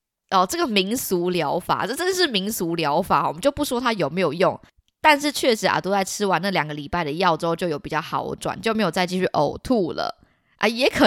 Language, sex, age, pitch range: Chinese, female, 20-39, 180-285 Hz